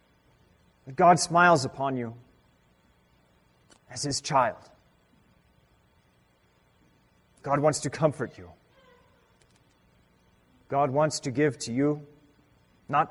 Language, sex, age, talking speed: English, male, 30-49, 85 wpm